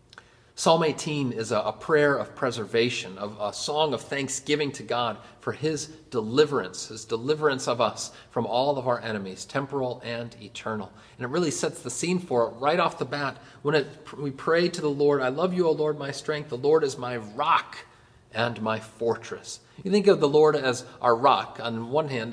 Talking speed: 195 wpm